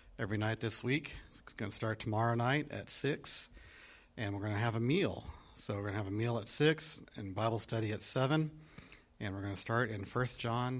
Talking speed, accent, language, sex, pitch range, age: 210 wpm, American, English, male, 100-120 Hz, 40-59